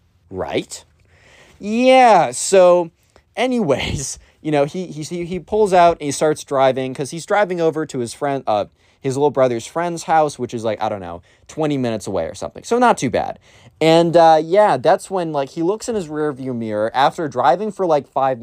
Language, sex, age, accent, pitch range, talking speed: English, male, 20-39, American, 115-165 Hz, 195 wpm